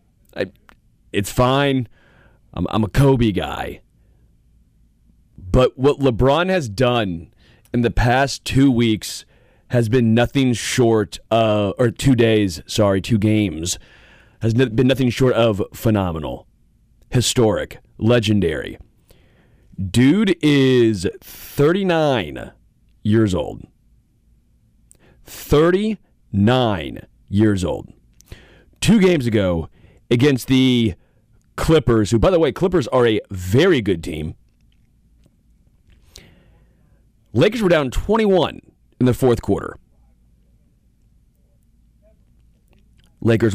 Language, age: English, 30-49